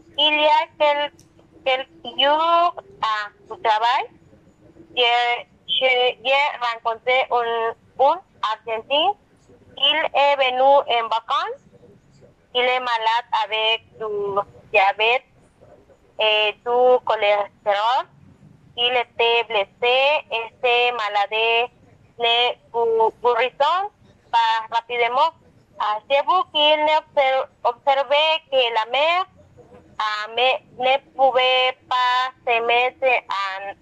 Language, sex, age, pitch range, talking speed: French, female, 20-39, 225-275 Hz, 105 wpm